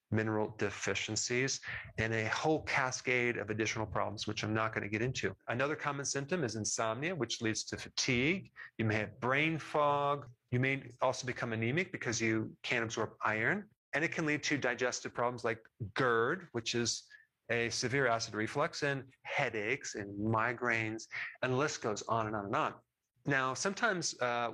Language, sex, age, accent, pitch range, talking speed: English, male, 40-59, American, 115-140 Hz, 175 wpm